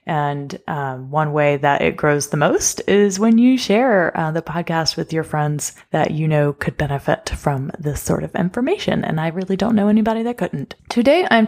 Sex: female